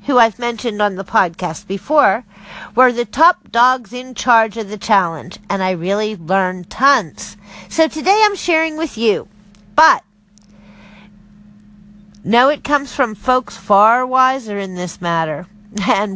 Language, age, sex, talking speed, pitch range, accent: English, 50-69, female, 145 wpm, 205-275 Hz, American